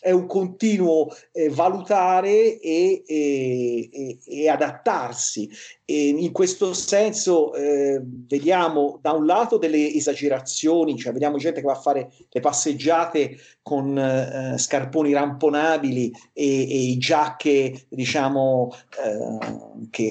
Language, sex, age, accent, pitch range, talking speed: Italian, male, 40-59, native, 135-165 Hz, 115 wpm